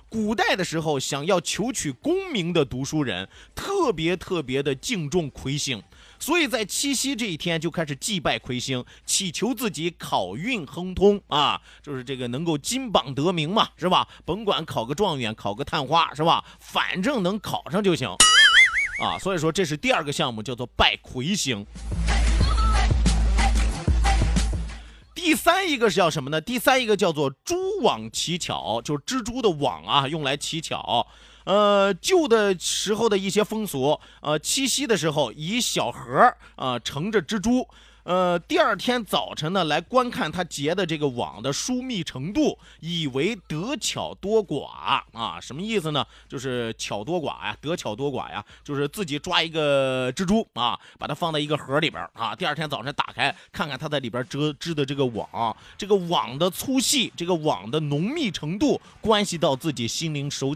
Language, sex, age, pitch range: Chinese, male, 30-49, 140-210 Hz